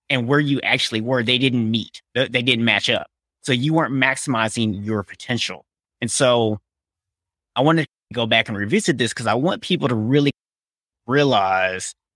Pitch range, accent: 105-140 Hz, American